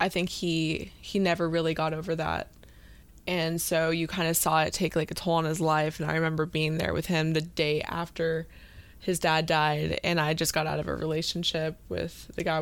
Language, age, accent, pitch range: English, 20-39, American, 155-170 Hz